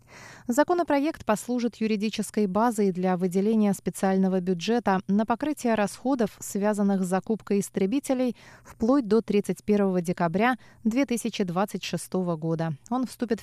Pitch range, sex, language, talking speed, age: 185-235 Hz, female, Russian, 105 wpm, 20-39